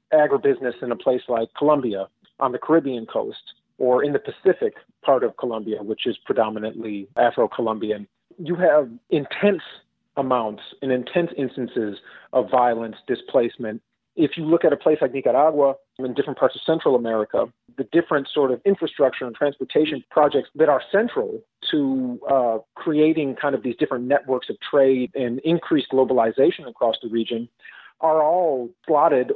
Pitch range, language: 120-160 Hz, English